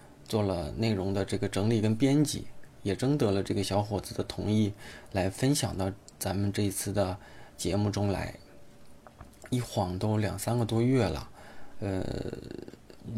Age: 20-39